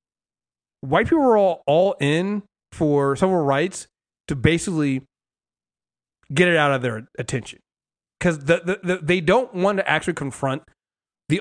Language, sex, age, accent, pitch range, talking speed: English, male, 30-49, American, 140-195 Hz, 145 wpm